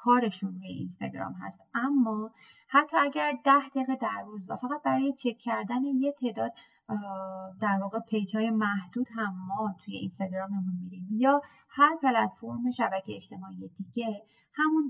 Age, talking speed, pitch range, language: 30-49, 135 wpm, 195-250 Hz, Persian